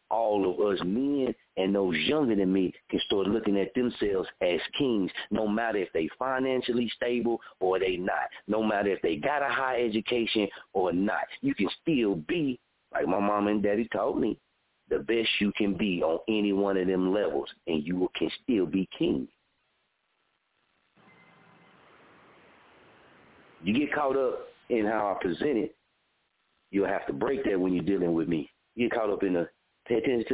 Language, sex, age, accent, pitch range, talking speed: English, male, 40-59, American, 100-140 Hz, 180 wpm